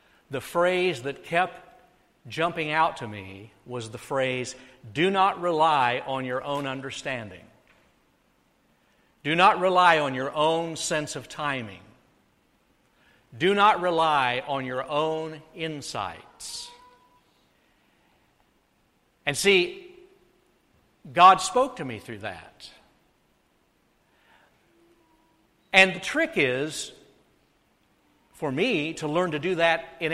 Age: 60-79